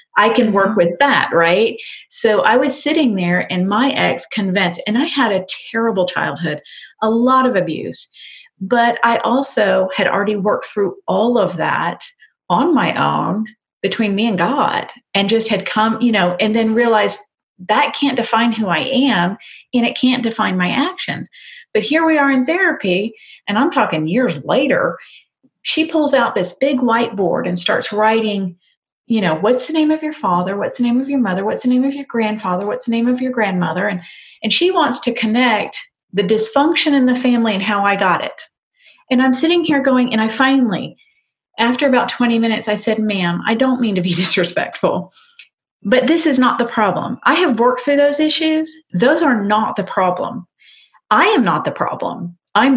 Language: English